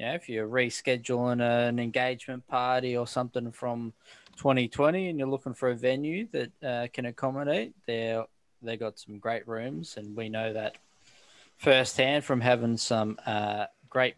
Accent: Australian